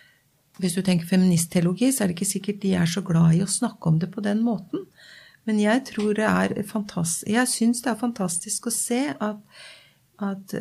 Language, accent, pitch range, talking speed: English, Swedish, 185-225 Hz, 170 wpm